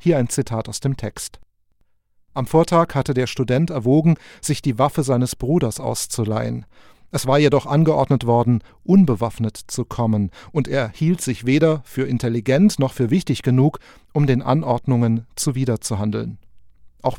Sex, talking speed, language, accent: male, 145 wpm, German, German